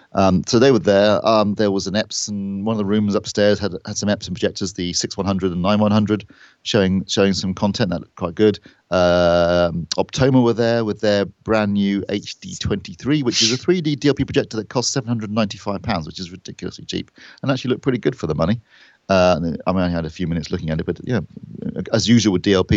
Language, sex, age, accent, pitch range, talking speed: English, male, 40-59, British, 95-115 Hz, 205 wpm